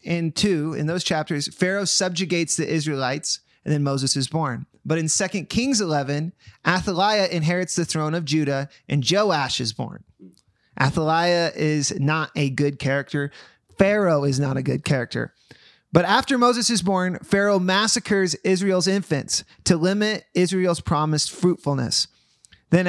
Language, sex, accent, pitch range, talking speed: English, male, American, 150-190 Hz, 145 wpm